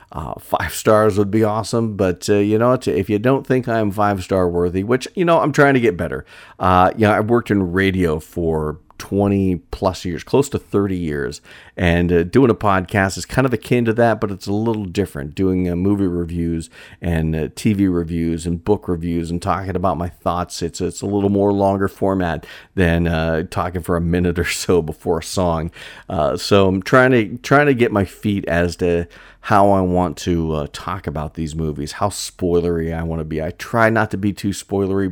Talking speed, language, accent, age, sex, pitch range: 210 wpm, English, American, 40-59, male, 80-100 Hz